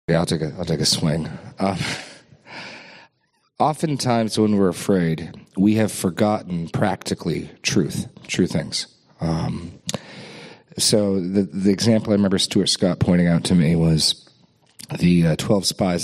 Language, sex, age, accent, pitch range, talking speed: English, male, 40-59, American, 85-110 Hz, 140 wpm